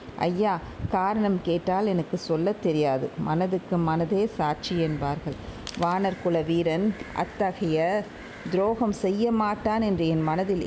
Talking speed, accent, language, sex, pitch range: 110 wpm, native, Tamil, female, 180-225 Hz